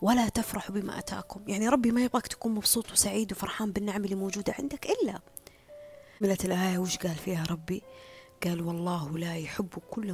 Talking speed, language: 165 wpm, Arabic